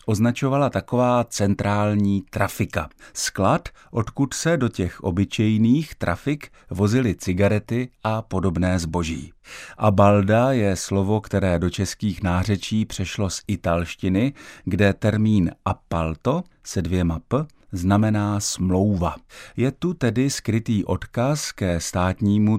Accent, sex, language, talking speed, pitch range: native, male, Czech, 110 wpm, 90-115 Hz